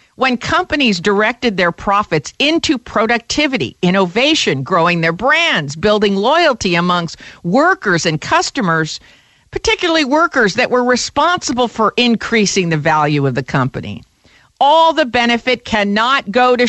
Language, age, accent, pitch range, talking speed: English, 50-69, American, 170-250 Hz, 125 wpm